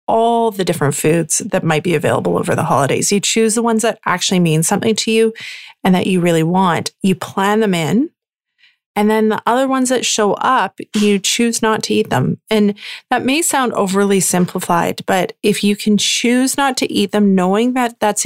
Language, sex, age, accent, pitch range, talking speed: English, female, 30-49, American, 180-220 Hz, 205 wpm